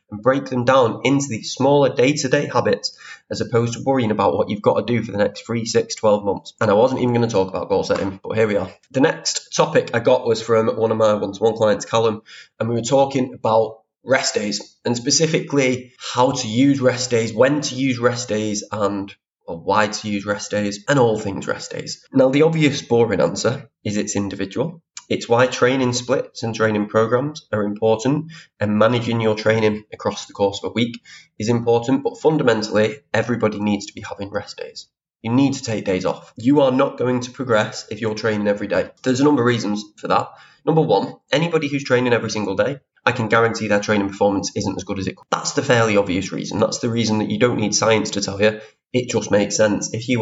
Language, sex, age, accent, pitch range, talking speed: English, male, 20-39, British, 105-130 Hz, 225 wpm